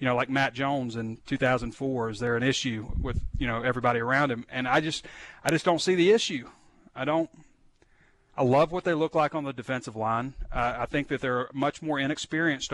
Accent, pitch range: American, 120-145 Hz